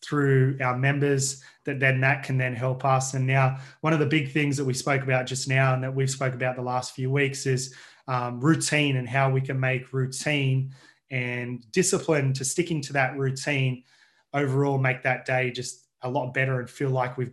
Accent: Australian